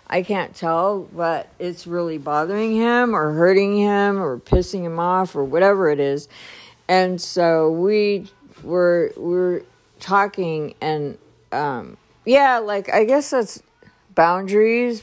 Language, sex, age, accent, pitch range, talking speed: English, female, 50-69, American, 155-200 Hz, 135 wpm